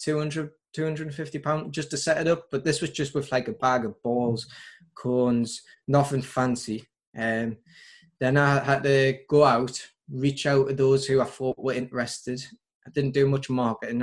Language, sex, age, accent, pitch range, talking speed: English, male, 20-39, British, 120-145 Hz, 185 wpm